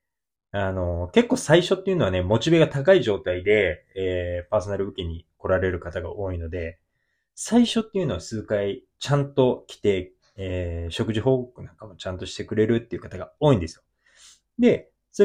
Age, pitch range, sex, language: 20-39, 90-140 Hz, male, Japanese